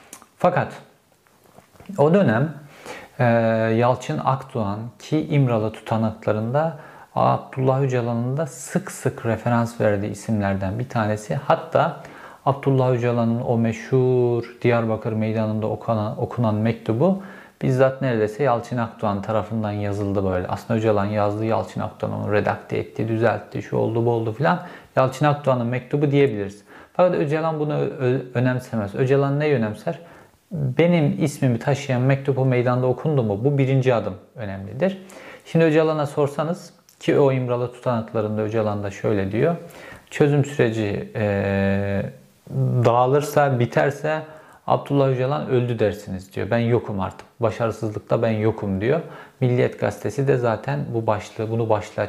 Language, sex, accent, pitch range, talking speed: Turkish, male, native, 105-140 Hz, 125 wpm